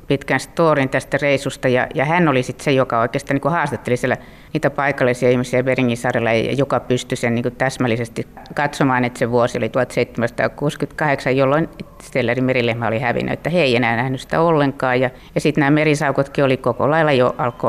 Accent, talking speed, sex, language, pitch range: native, 180 wpm, female, Finnish, 125-150 Hz